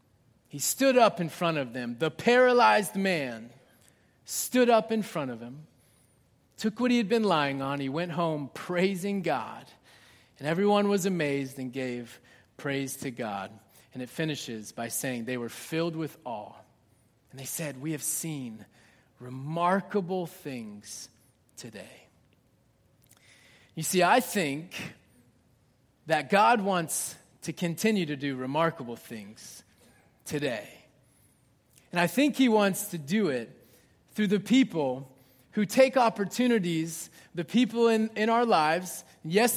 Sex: male